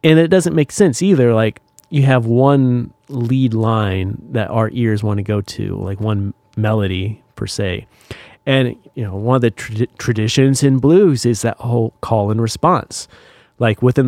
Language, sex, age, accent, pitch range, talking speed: English, male, 30-49, American, 110-135 Hz, 175 wpm